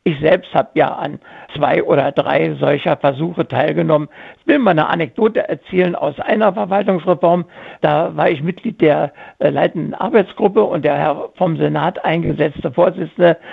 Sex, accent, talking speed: male, German, 150 wpm